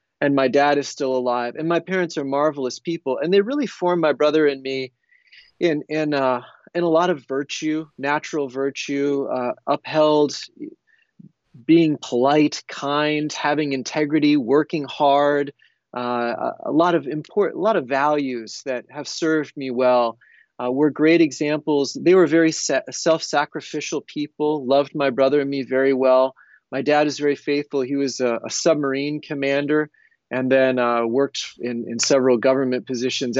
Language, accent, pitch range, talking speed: English, American, 125-155 Hz, 160 wpm